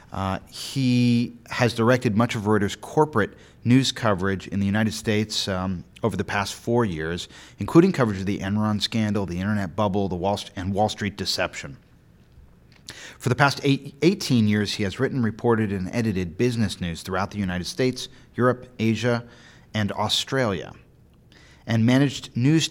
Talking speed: 160 wpm